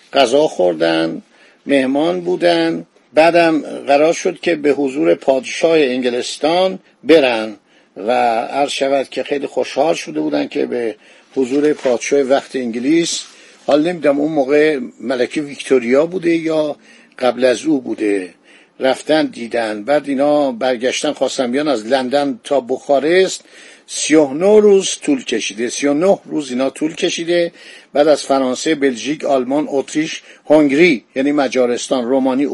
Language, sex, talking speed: Persian, male, 130 wpm